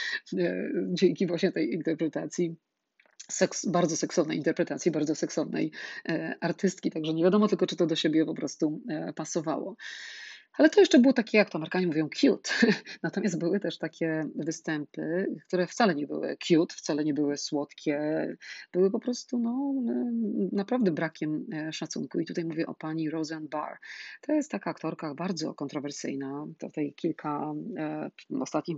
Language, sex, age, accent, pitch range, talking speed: Polish, female, 40-59, native, 160-185 Hz, 140 wpm